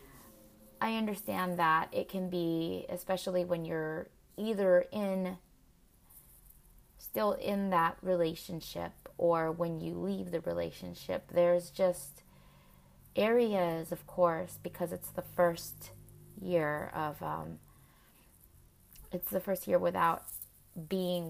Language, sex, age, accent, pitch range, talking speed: English, female, 20-39, American, 145-185 Hz, 110 wpm